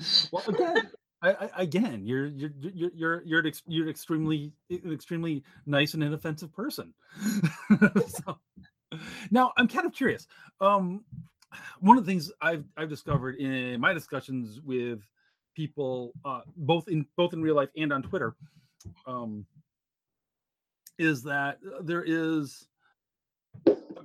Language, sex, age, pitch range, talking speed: English, male, 30-49, 125-165 Hz, 135 wpm